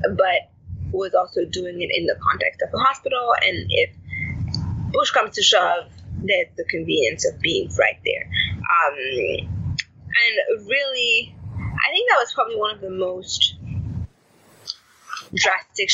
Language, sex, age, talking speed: English, female, 20-39, 140 wpm